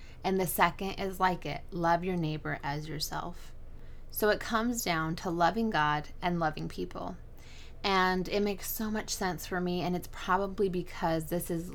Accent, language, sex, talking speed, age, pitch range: American, English, female, 180 wpm, 20-39, 170-200 Hz